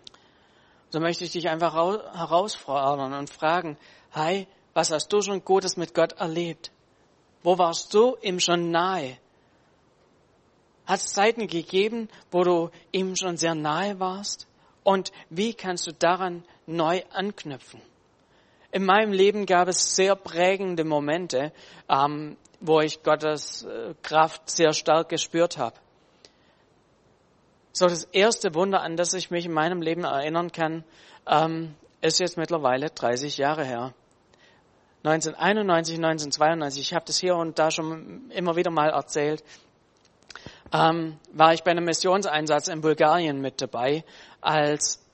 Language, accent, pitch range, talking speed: German, German, 155-180 Hz, 135 wpm